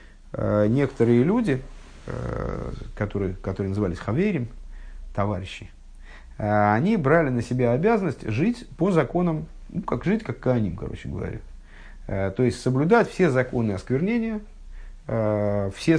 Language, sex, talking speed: Russian, male, 110 wpm